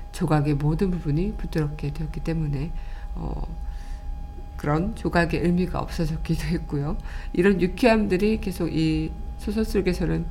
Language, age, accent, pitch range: Korean, 50-69, native, 160-200 Hz